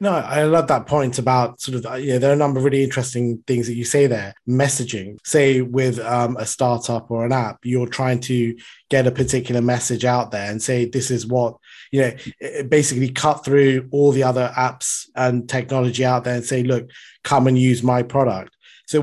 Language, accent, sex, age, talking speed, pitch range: English, British, male, 20-39, 210 wpm, 125-140 Hz